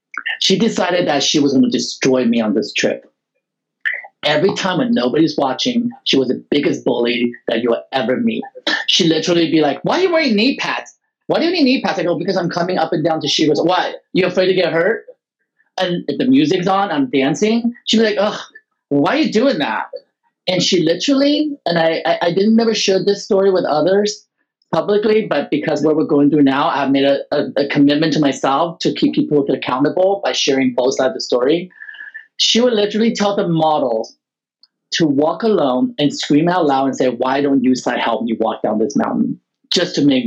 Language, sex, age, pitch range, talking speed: English, male, 30-49, 145-230 Hz, 215 wpm